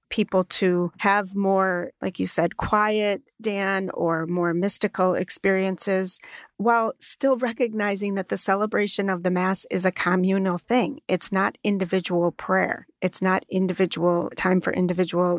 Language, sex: English, female